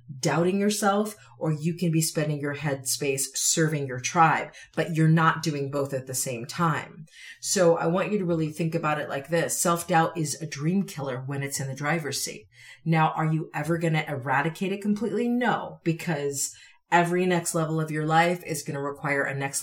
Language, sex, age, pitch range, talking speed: English, female, 40-59, 140-170 Hz, 200 wpm